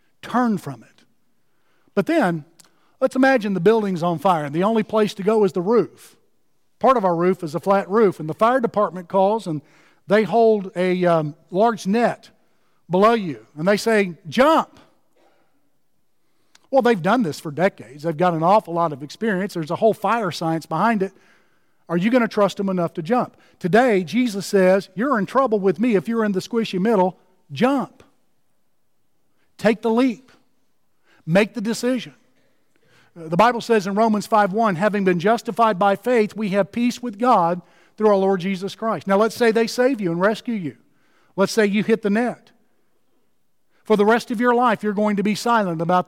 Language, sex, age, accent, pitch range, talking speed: English, male, 50-69, American, 180-230 Hz, 190 wpm